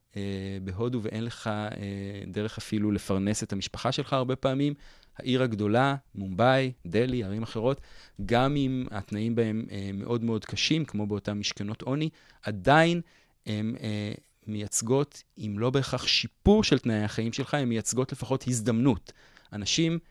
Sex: male